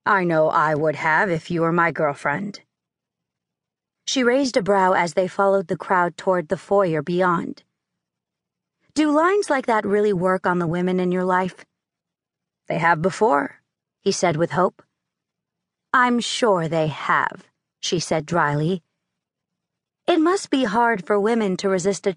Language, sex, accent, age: English, female, American, 40-59